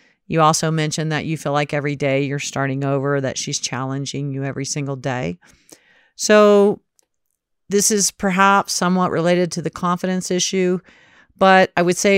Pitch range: 150-200 Hz